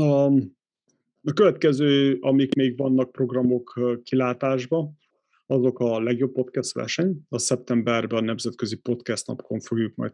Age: 30-49